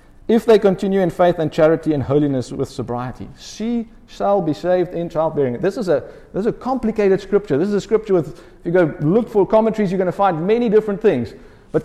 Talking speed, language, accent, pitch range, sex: 220 wpm, English, South African, 145-210 Hz, male